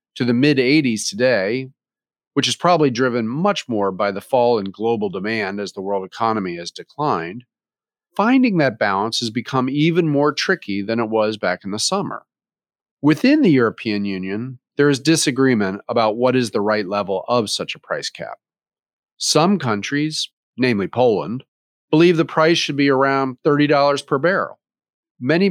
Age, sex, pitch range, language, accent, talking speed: 40-59, male, 110-150 Hz, English, American, 160 wpm